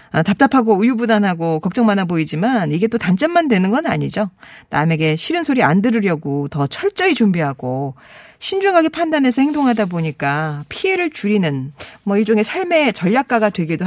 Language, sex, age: Korean, female, 40-59